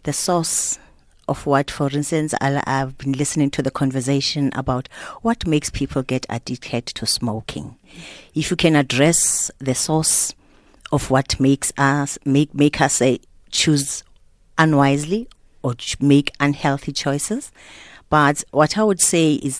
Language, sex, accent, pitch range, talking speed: English, female, South African, 125-150 Hz, 145 wpm